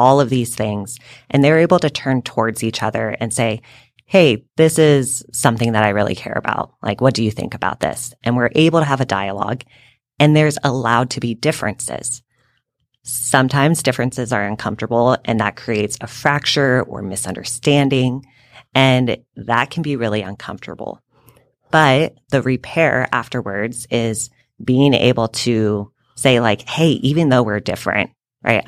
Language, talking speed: English, 160 wpm